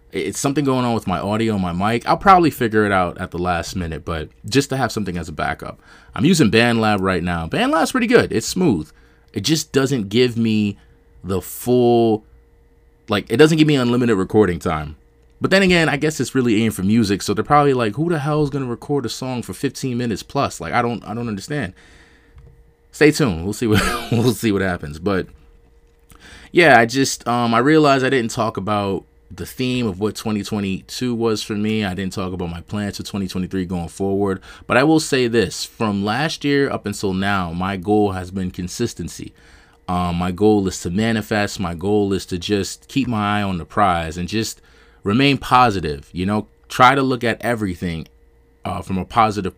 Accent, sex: American, male